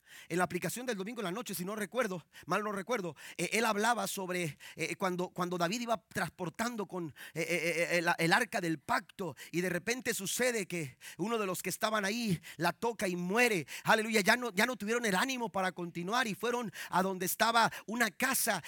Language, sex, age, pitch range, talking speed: Spanish, male, 40-59, 185-255 Hz, 205 wpm